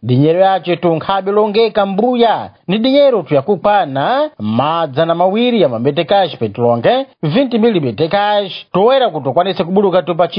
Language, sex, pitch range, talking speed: Portuguese, male, 150-200 Hz, 135 wpm